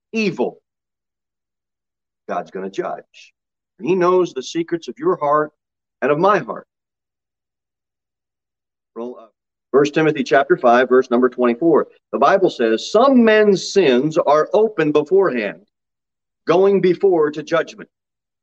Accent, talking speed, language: American, 125 wpm, English